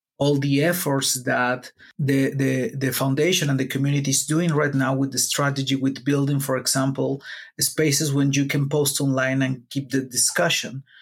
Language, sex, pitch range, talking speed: English, male, 140-175 Hz, 175 wpm